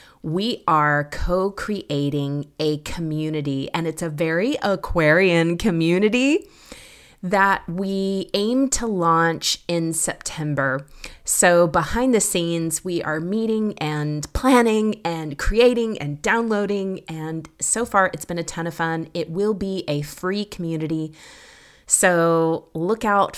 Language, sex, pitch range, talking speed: English, female, 160-200 Hz, 125 wpm